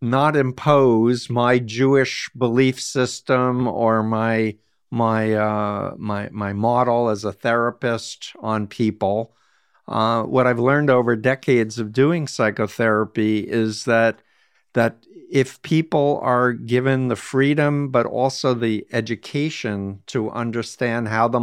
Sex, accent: male, American